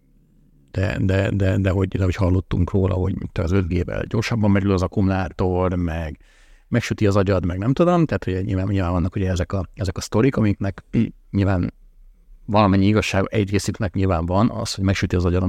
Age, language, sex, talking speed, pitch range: 50-69, Hungarian, male, 180 wpm, 95-105 Hz